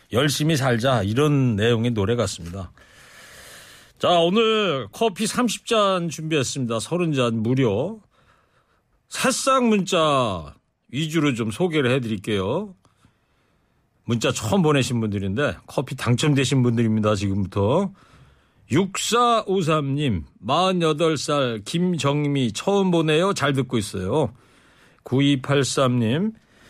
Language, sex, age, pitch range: Korean, male, 40-59, 120-175 Hz